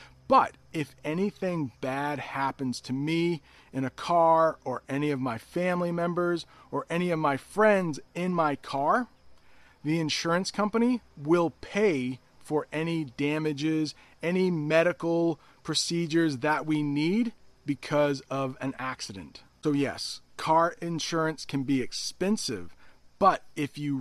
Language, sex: English, male